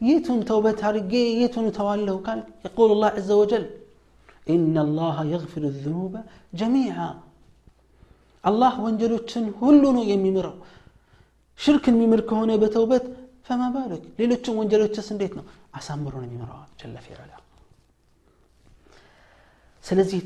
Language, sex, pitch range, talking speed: Amharic, male, 120-185 Hz, 100 wpm